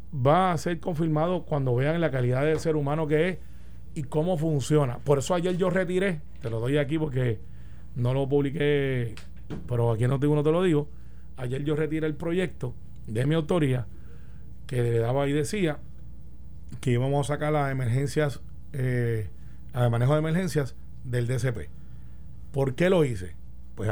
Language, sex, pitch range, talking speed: Spanish, male, 115-155 Hz, 170 wpm